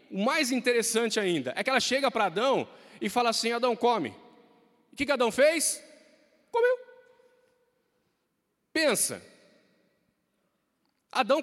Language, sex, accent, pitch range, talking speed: Portuguese, male, Brazilian, 190-255 Hz, 120 wpm